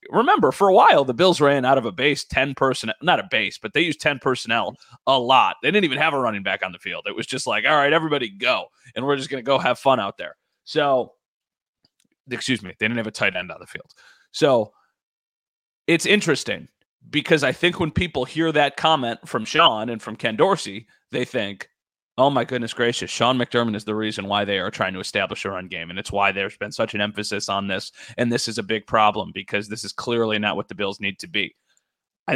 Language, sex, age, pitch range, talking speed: English, male, 30-49, 110-145 Hz, 235 wpm